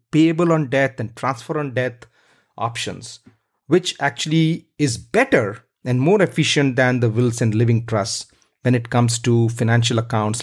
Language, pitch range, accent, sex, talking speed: English, 120-170 Hz, Indian, male, 155 wpm